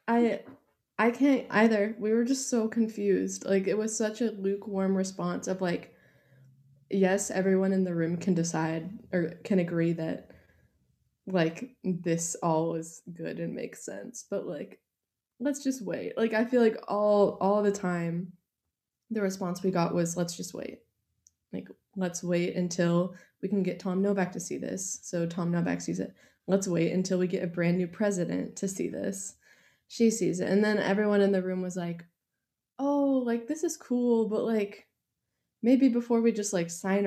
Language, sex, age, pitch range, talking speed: English, female, 20-39, 170-215 Hz, 180 wpm